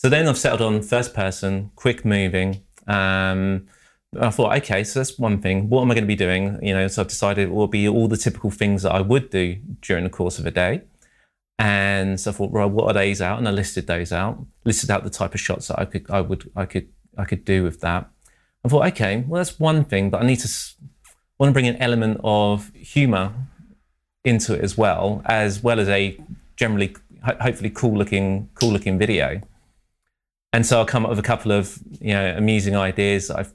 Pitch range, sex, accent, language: 95-115 Hz, male, British, English